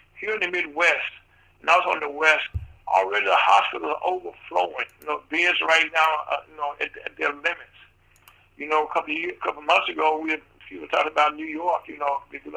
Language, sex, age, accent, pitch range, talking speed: English, male, 60-79, American, 145-165 Hz, 240 wpm